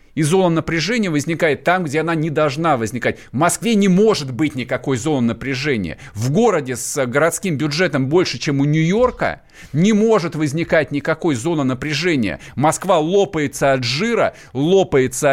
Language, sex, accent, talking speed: Russian, male, native, 150 wpm